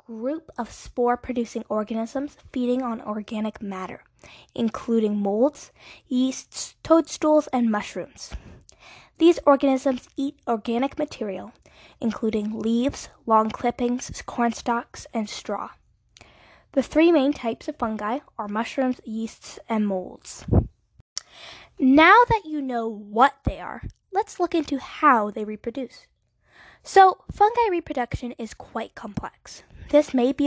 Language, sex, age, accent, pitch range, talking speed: English, female, 10-29, American, 225-280 Hz, 120 wpm